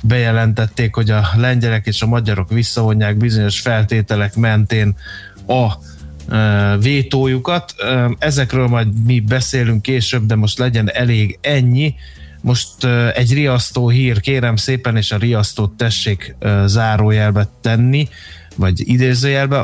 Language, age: Hungarian, 20-39